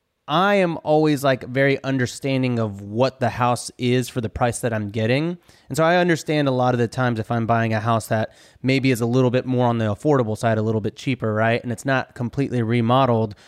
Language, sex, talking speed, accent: English, male, 230 wpm, American